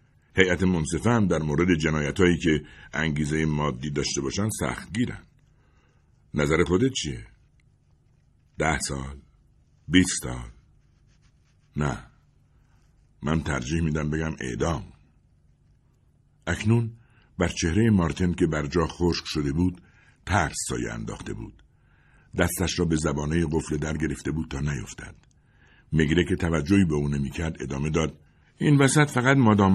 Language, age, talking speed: Persian, 60-79, 125 wpm